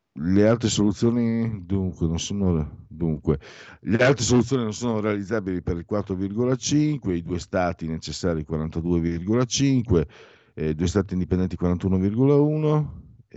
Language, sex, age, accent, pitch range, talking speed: Italian, male, 50-69, native, 80-115 Hz, 120 wpm